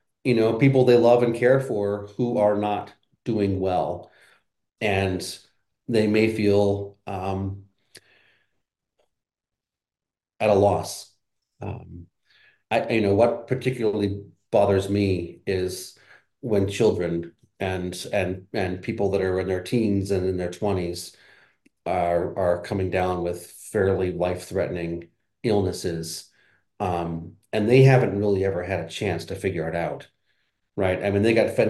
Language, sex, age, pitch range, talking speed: English, male, 40-59, 95-110 Hz, 135 wpm